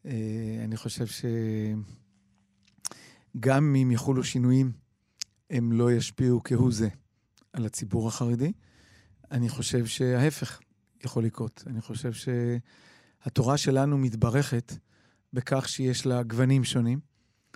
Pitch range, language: 120-140 Hz, Hebrew